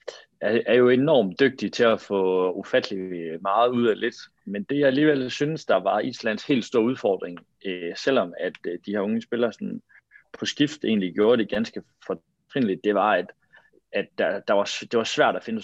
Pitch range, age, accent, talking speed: 95-135 Hz, 30-49, native, 195 wpm